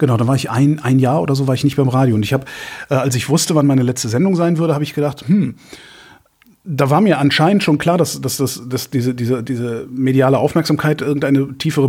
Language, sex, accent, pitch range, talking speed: German, male, German, 125-155 Hz, 240 wpm